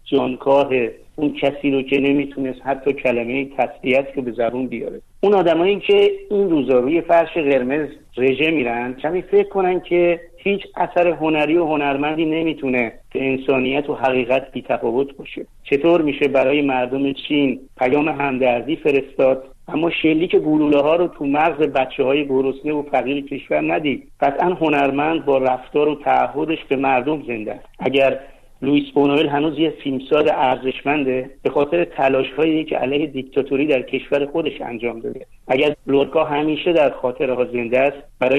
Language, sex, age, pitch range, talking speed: Persian, male, 50-69, 135-155 Hz, 150 wpm